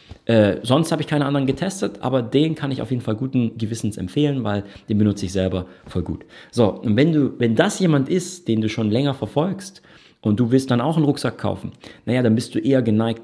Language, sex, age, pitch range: German, male, 40-59, 100-140 Hz